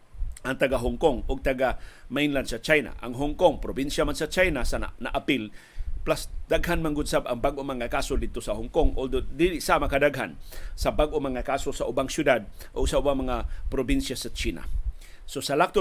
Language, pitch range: Filipino, 125-155 Hz